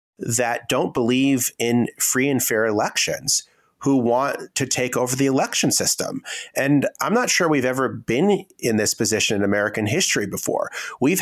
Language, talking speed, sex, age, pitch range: English, 165 wpm, male, 30-49, 115-145 Hz